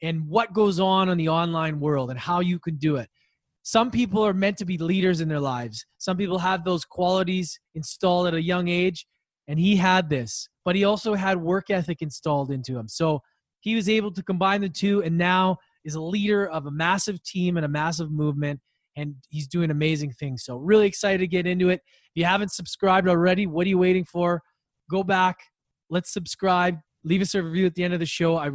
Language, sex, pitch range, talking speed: English, male, 160-190 Hz, 220 wpm